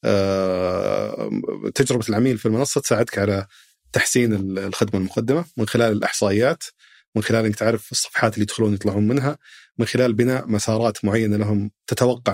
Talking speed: 135 wpm